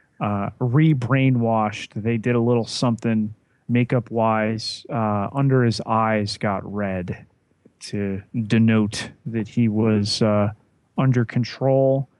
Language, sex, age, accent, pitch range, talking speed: English, male, 30-49, American, 105-130 Hz, 110 wpm